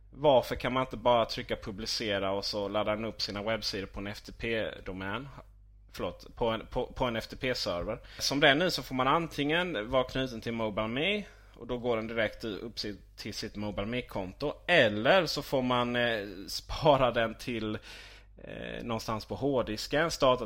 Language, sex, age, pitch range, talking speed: Swedish, male, 20-39, 105-135 Hz, 170 wpm